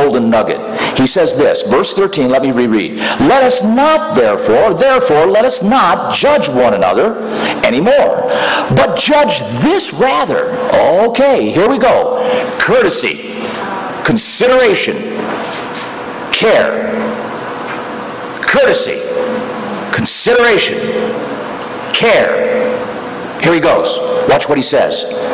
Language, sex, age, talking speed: English, male, 60-79, 100 wpm